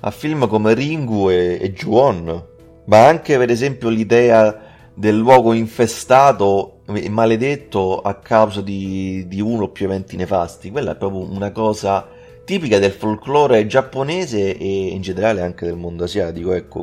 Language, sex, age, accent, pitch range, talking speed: Italian, male, 30-49, native, 90-115 Hz, 155 wpm